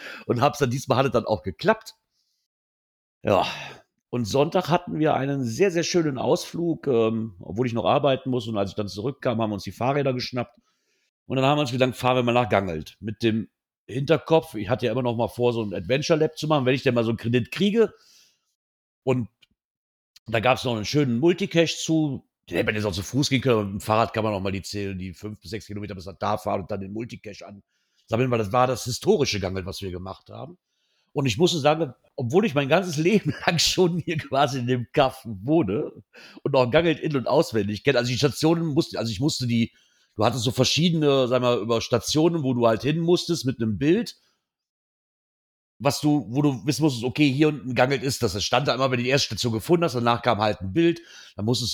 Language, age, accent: German, 50-69, German